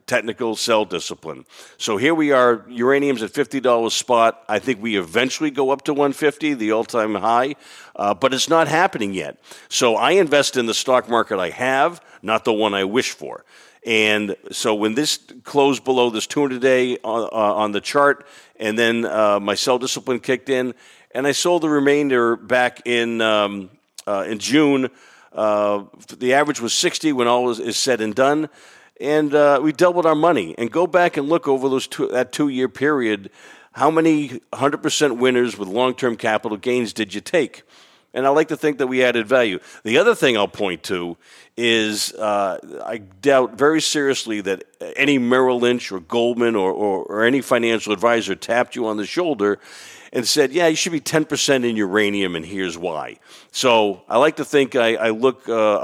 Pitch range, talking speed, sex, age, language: 110-140 Hz, 190 wpm, male, 50-69, English